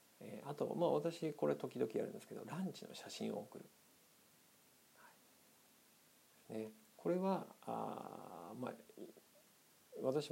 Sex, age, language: male, 50-69, Japanese